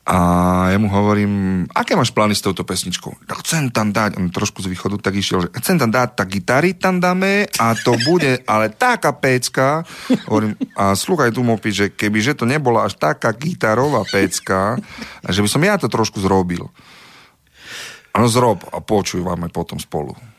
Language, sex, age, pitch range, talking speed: Slovak, male, 40-59, 90-115 Hz, 185 wpm